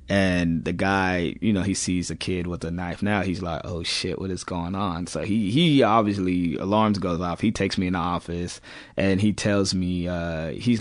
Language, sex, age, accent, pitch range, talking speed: English, male, 20-39, American, 95-120 Hz, 220 wpm